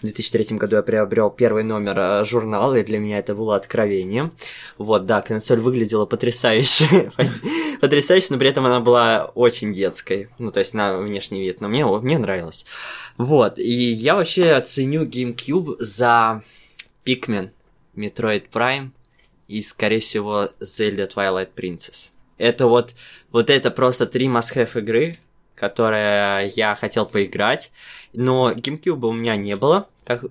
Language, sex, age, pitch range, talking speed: Russian, male, 20-39, 105-125 Hz, 140 wpm